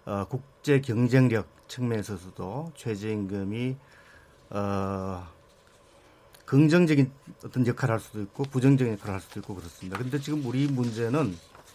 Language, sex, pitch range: Korean, male, 110-140 Hz